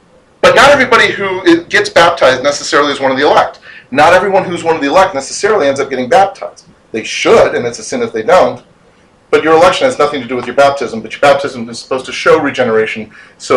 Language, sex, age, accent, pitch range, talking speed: English, male, 40-59, American, 125-175 Hz, 230 wpm